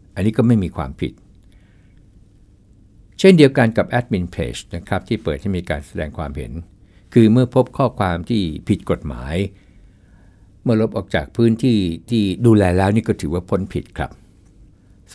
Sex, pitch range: male, 90-110 Hz